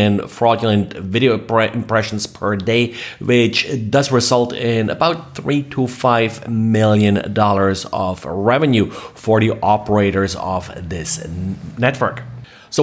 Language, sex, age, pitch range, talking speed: English, male, 30-49, 100-120 Hz, 120 wpm